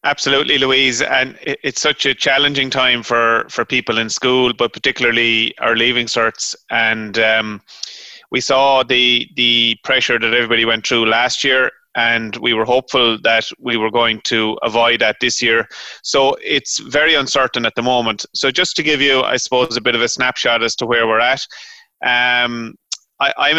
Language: English